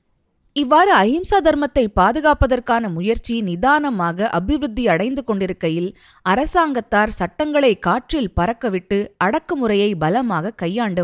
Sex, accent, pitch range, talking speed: female, native, 185-265 Hz, 85 wpm